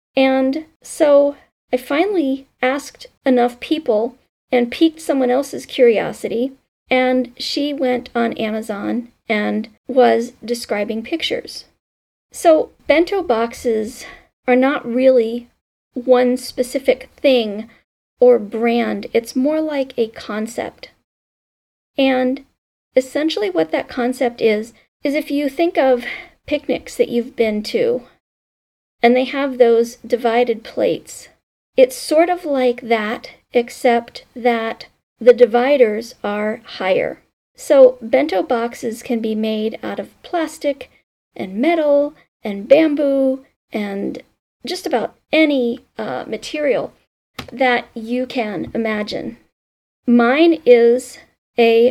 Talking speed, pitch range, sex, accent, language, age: 110 wpm, 235-290 Hz, female, American, English, 40-59